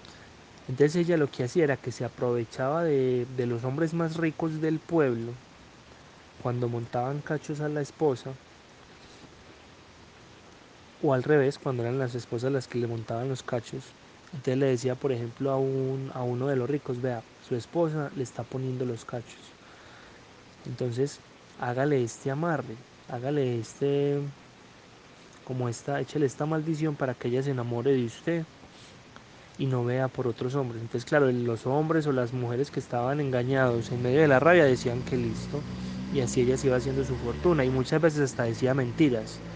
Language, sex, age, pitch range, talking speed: Spanish, male, 20-39, 120-145 Hz, 170 wpm